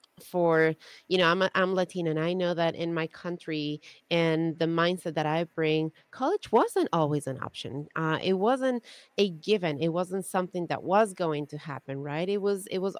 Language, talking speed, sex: English, 195 wpm, female